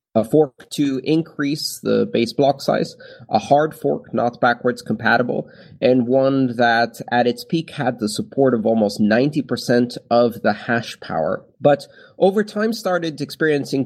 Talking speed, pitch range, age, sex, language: 150 wpm, 110-140 Hz, 30-49, male, English